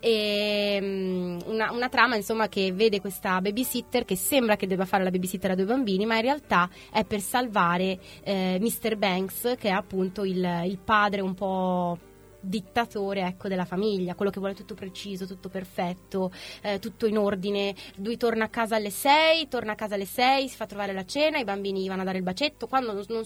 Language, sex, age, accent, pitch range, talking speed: Italian, female, 20-39, native, 185-225 Hz, 190 wpm